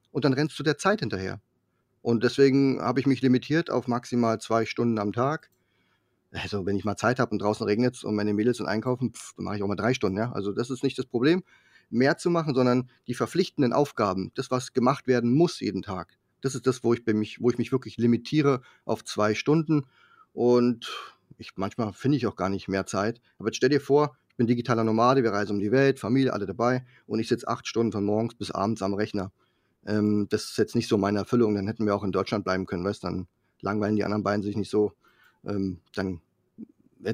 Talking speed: 230 wpm